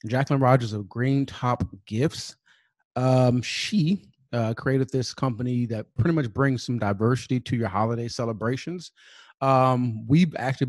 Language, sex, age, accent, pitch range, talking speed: English, male, 30-49, American, 115-135 Hz, 140 wpm